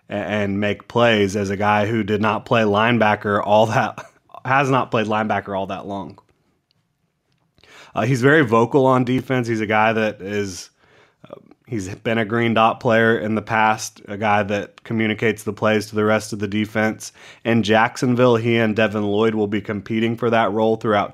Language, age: English, 30-49